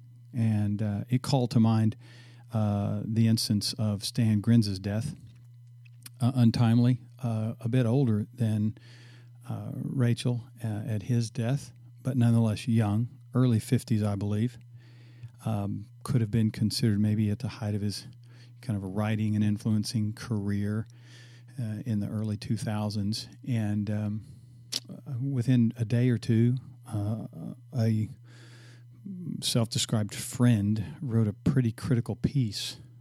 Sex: male